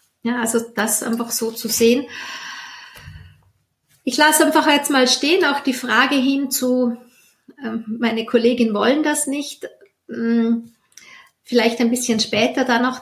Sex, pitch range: female, 230-285 Hz